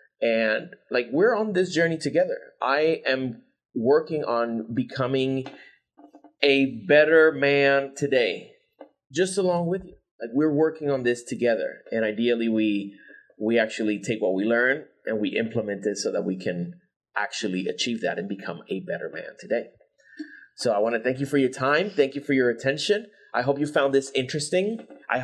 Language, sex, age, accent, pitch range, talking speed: English, male, 30-49, American, 125-185 Hz, 175 wpm